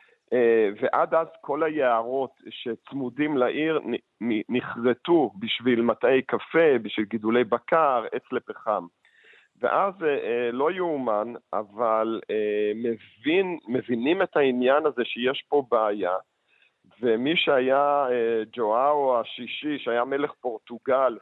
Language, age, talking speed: Hebrew, 50-69, 95 wpm